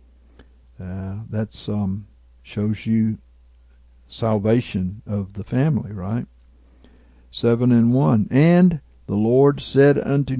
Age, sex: 60-79, male